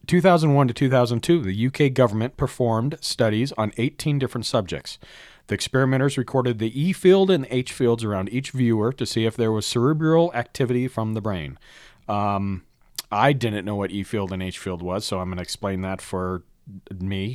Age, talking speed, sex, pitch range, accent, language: 40-59, 185 wpm, male, 95-130 Hz, American, English